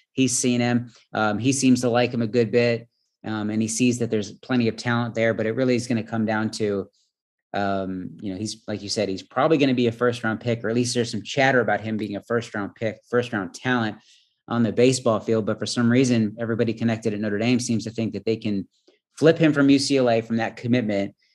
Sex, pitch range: male, 110-125 Hz